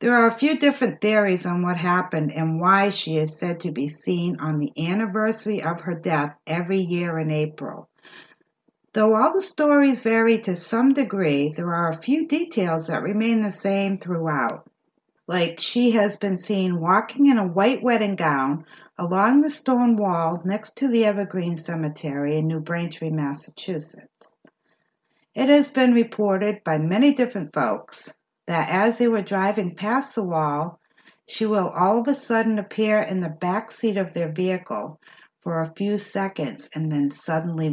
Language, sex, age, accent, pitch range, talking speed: English, female, 60-79, American, 160-220 Hz, 170 wpm